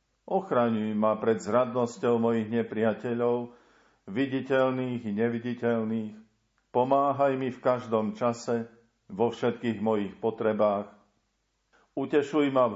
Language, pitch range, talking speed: Slovak, 110-125 Hz, 100 wpm